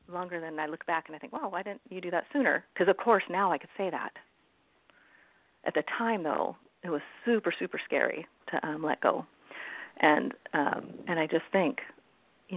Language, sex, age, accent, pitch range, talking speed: English, female, 40-59, American, 155-190 Hz, 210 wpm